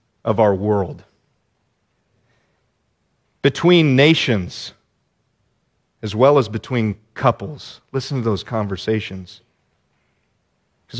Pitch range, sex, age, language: 105-125 Hz, male, 40-59, English